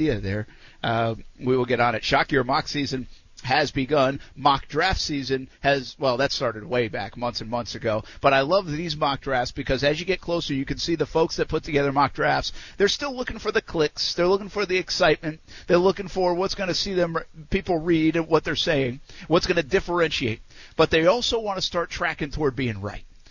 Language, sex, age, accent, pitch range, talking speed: English, male, 50-69, American, 130-165 Hz, 220 wpm